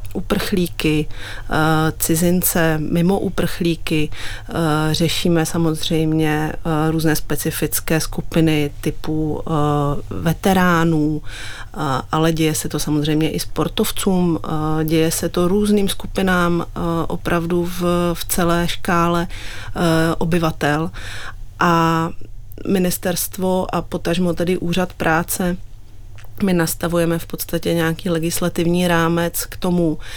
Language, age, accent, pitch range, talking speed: Czech, 30-49, native, 155-175 Hz, 90 wpm